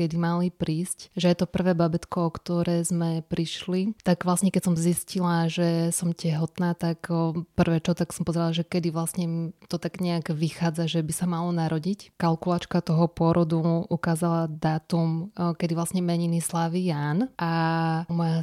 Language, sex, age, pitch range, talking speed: Slovak, female, 20-39, 165-180 Hz, 165 wpm